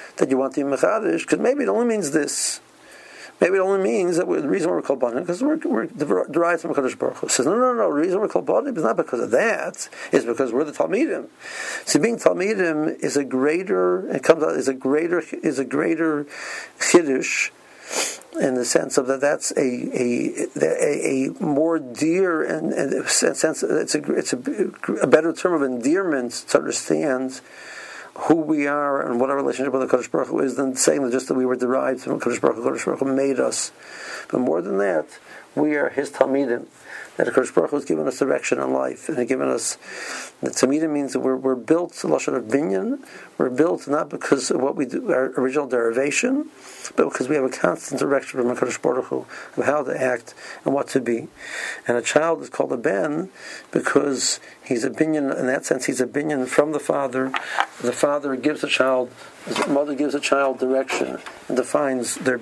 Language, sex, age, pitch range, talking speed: English, male, 50-69, 130-160 Hz, 205 wpm